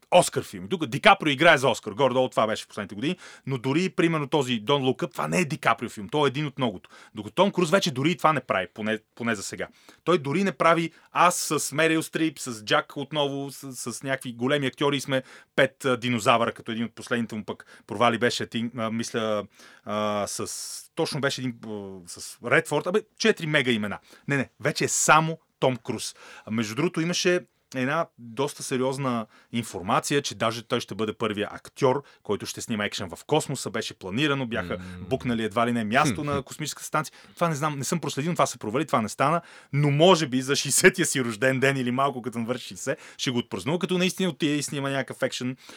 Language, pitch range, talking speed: Bulgarian, 115-150 Hz, 210 wpm